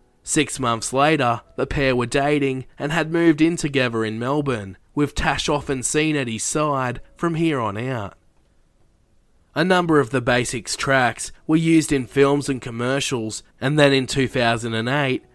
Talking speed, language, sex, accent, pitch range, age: 160 wpm, English, male, Australian, 115-145 Hz, 20-39